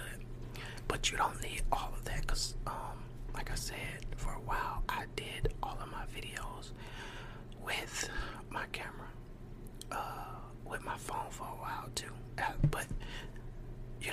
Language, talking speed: English, 140 wpm